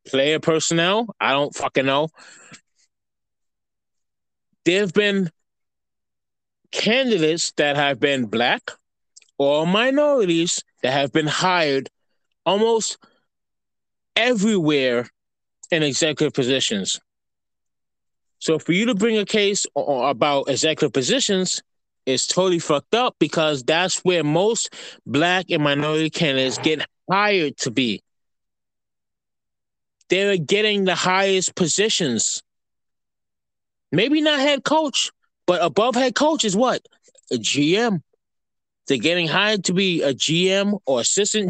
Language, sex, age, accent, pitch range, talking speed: English, male, 20-39, American, 145-200 Hz, 110 wpm